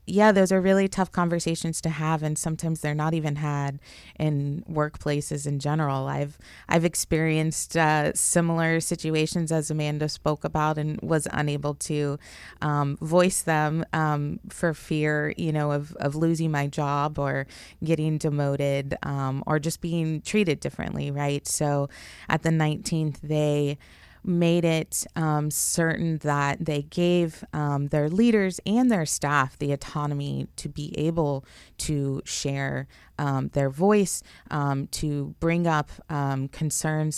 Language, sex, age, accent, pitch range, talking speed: English, female, 20-39, American, 145-165 Hz, 145 wpm